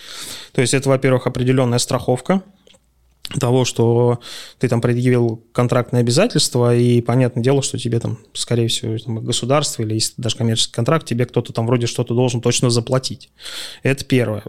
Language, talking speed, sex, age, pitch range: Russian, 150 wpm, male, 20-39, 120-145 Hz